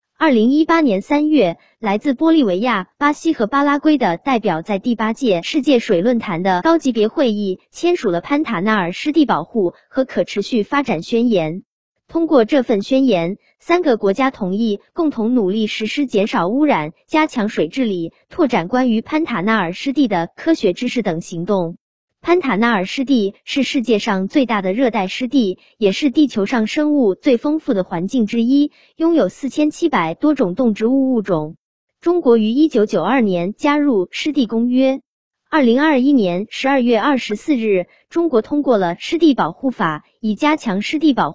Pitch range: 205-290 Hz